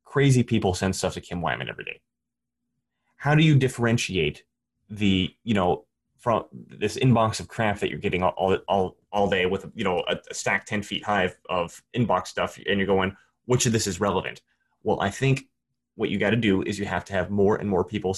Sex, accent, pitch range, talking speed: male, American, 95-115 Hz, 220 wpm